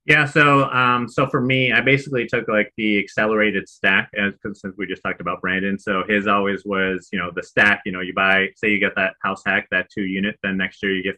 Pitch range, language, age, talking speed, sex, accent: 95-110 Hz, English, 30-49, 245 wpm, male, American